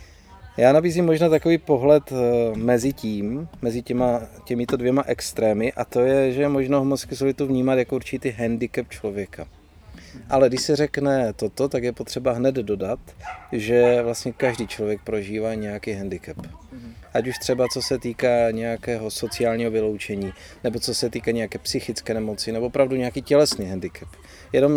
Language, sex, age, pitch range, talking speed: Czech, male, 30-49, 110-140 Hz, 150 wpm